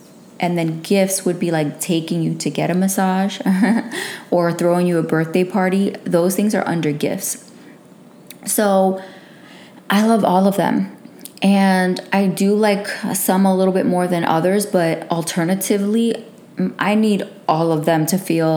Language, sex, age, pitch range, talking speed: English, female, 20-39, 165-195 Hz, 160 wpm